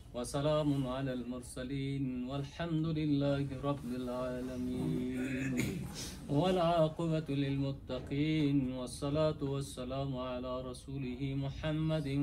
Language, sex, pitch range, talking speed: Persian, male, 125-155 Hz, 70 wpm